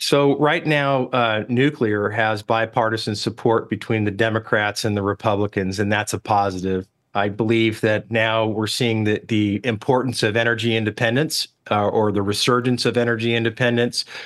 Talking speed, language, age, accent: 155 wpm, English, 40-59, American